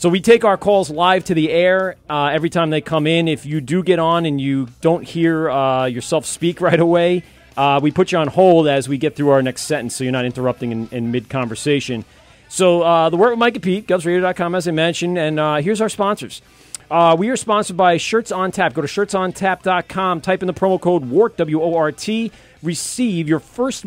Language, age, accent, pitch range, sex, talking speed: English, 40-59, American, 130-175 Hz, male, 230 wpm